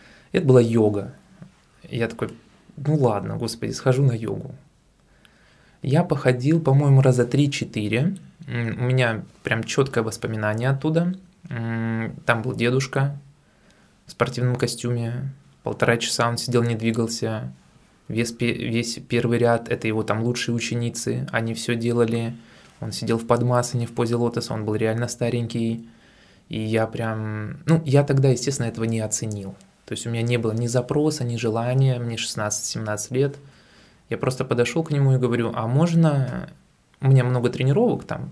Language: Russian